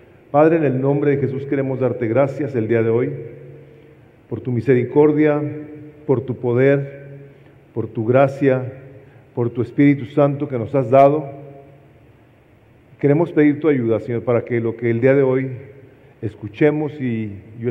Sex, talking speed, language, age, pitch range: male, 155 wpm, English, 40-59, 120-145 Hz